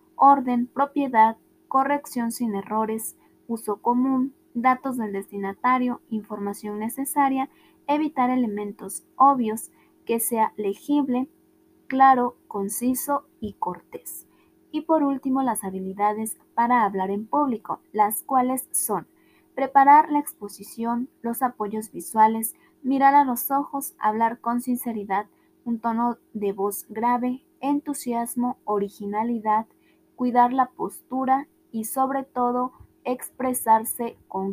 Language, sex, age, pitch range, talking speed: Spanish, female, 20-39, 220-285 Hz, 110 wpm